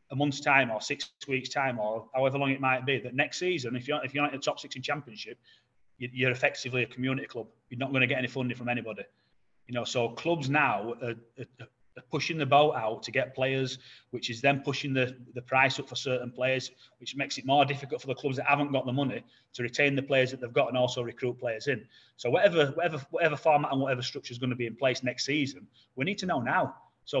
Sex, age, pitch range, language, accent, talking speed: male, 30-49, 125-140 Hz, English, British, 250 wpm